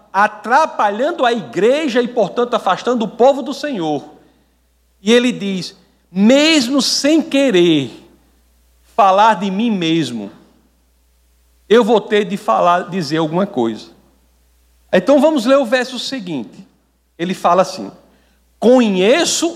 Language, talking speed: Portuguese, 115 wpm